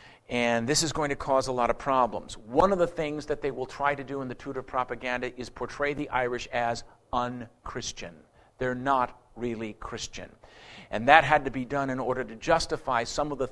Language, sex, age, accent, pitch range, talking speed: English, male, 50-69, American, 125-160 Hz, 210 wpm